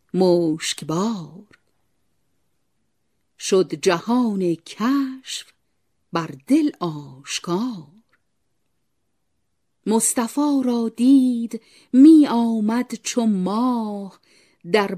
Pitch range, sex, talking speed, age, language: 180-250 Hz, female, 60 wpm, 50-69, Persian